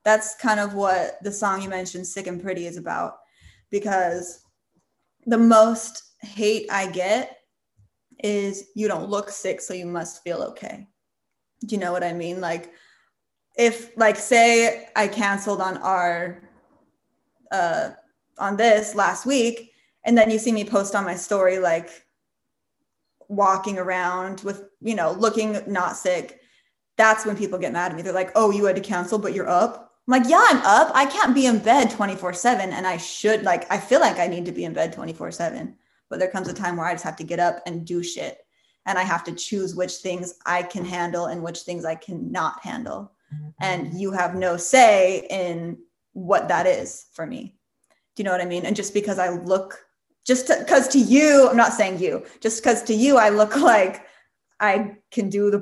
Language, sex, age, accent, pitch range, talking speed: English, female, 20-39, American, 180-220 Hz, 195 wpm